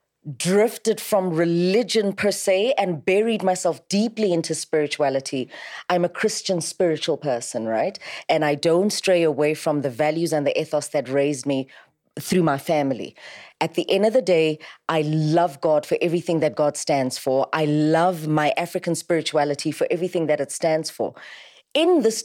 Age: 30-49